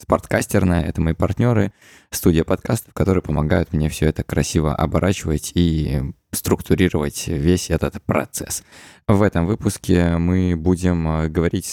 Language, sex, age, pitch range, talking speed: Russian, male, 20-39, 80-95 Hz, 125 wpm